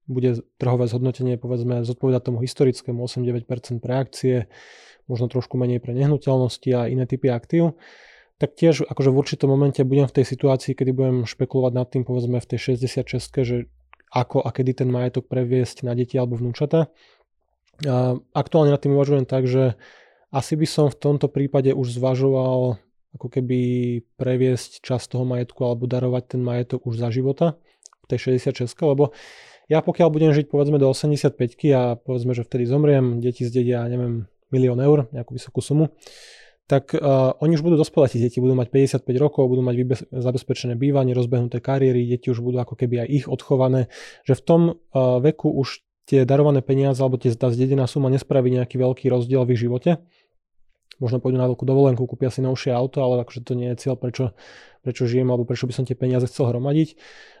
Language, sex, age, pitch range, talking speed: Slovak, male, 20-39, 125-140 Hz, 180 wpm